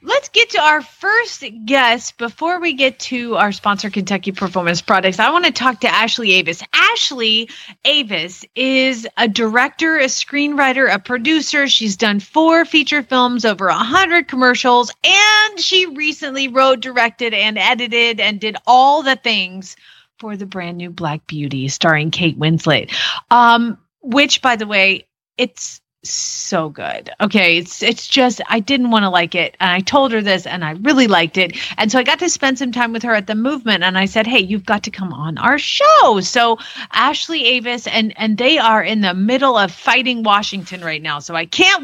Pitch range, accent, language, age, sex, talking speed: 200-275 Hz, American, English, 30-49, female, 190 wpm